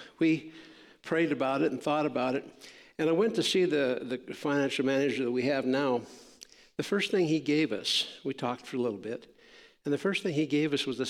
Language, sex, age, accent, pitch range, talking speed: English, male, 60-79, American, 125-200 Hz, 225 wpm